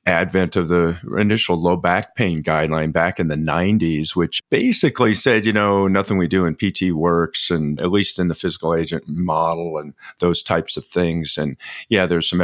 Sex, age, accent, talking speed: male, 40-59, American, 195 wpm